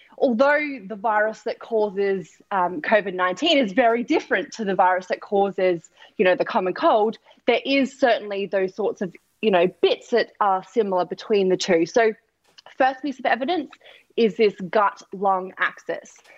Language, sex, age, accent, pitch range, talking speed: English, female, 20-39, Australian, 205-275 Hz, 160 wpm